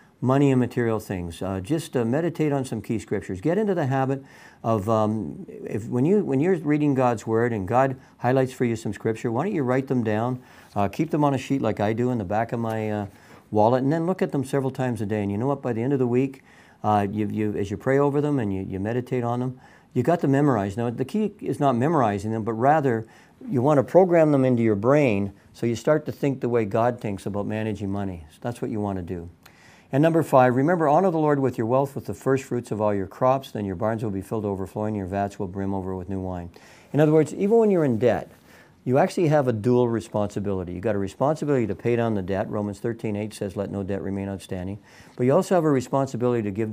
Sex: male